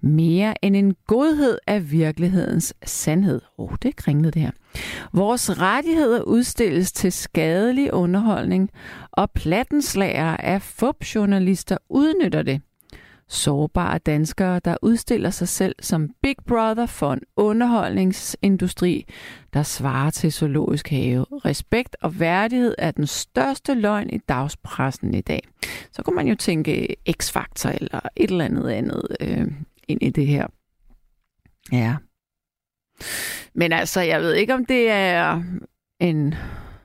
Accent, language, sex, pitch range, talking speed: native, Danish, female, 155-220 Hz, 130 wpm